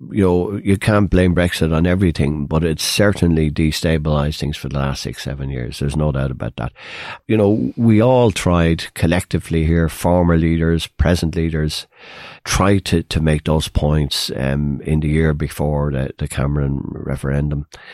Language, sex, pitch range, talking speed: English, male, 75-90 Hz, 165 wpm